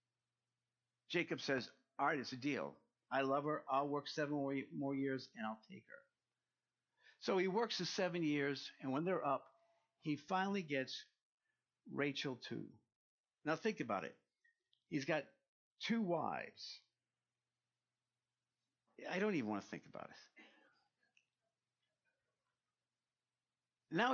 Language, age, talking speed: English, 50-69, 125 wpm